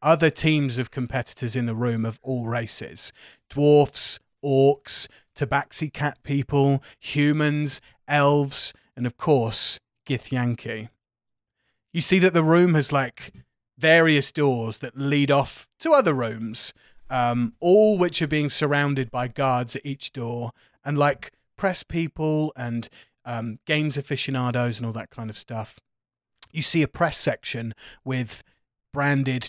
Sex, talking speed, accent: male, 140 wpm, British